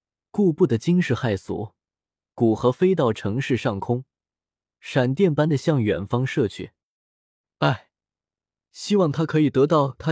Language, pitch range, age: Chinese, 115-160 Hz, 20-39